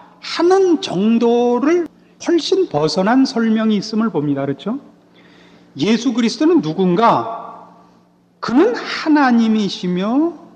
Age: 40-59